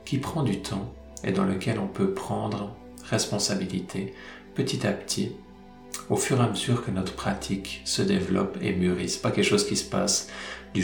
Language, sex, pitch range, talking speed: French, male, 90-110 Hz, 195 wpm